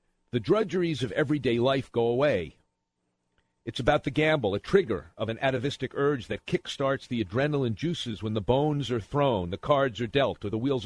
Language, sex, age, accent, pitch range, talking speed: English, male, 50-69, American, 105-140 Hz, 190 wpm